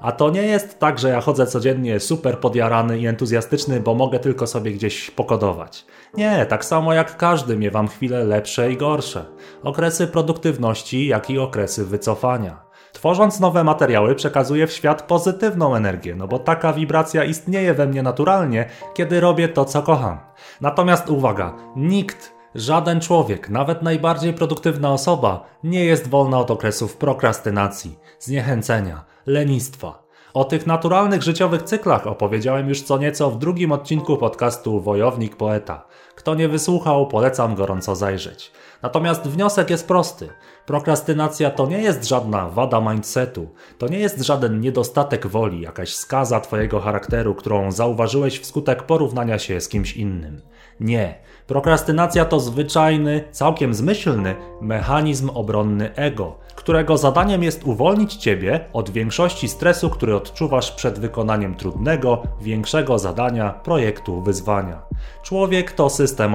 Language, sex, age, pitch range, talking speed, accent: Polish, male, 30-49, 110-160 Hz, 135 wpm, native